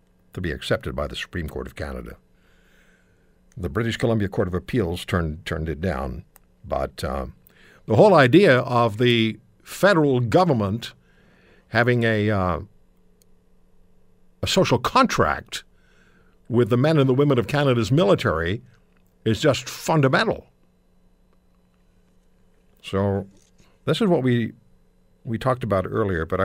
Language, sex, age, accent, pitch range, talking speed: English, male, 60-79, American, 90-130 Hz, 125 wpm